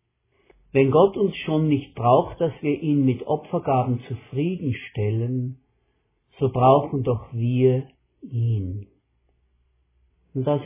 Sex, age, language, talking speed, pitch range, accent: male, 60-79, German, 105 wpm, 110-150 Hz, German